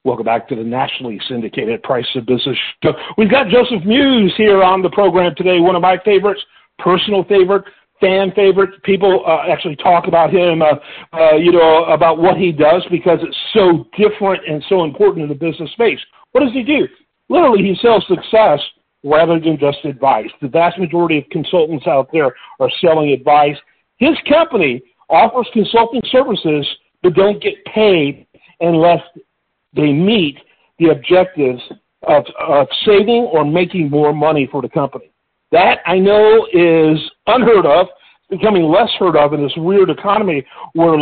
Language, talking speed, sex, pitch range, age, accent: English, 165 wpm, male, 155-200 Hz, 50-69, American